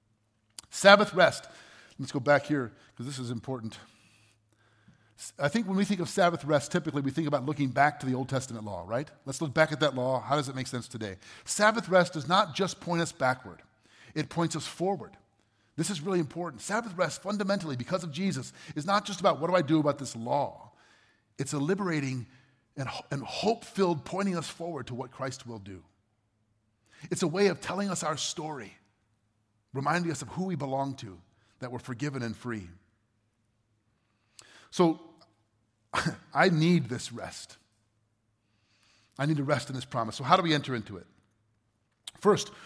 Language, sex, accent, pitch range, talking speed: English, male, American, 110-175 Hz, 180 wpm